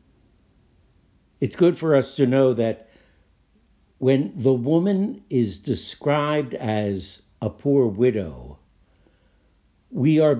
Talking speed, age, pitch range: 105 wpm, 60-79, 95-140 Hz